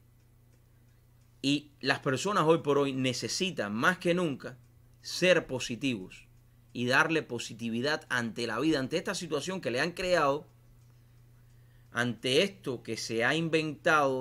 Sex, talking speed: male, 130 wpm